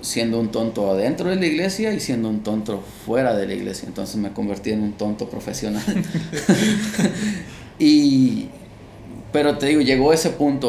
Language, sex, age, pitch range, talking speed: Spanish, male, 30-49, 105-130 Hz, 165 wpm